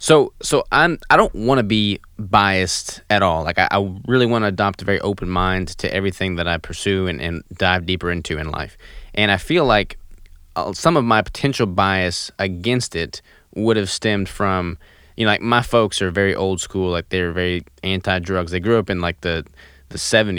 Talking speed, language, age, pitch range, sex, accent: 210 wpm, English, 20-39, 90-105 Hz, male, American